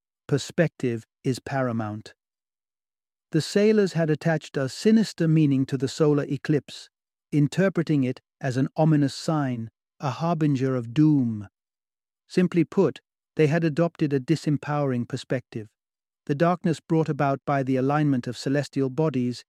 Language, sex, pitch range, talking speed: English, male, 125-160 Hz, 130 wpm